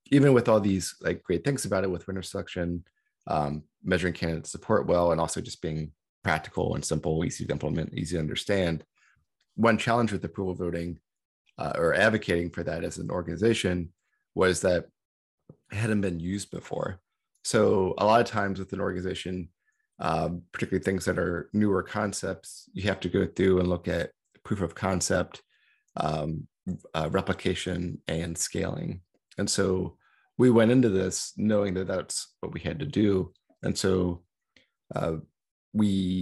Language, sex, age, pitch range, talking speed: English, male, 30-49, 85-100 Hz, 165 wpm